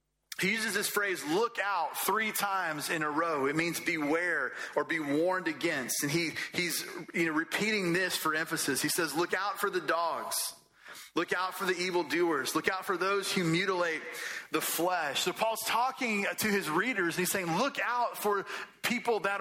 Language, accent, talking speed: English, American, 190 wpm